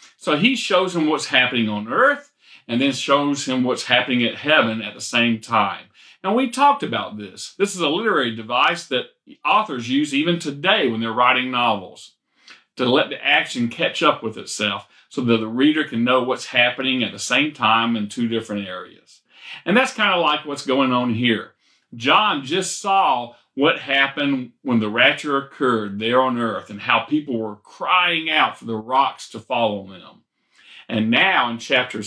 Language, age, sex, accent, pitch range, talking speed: English, 40-59, male, American, 115-150 Hz, 185 wpm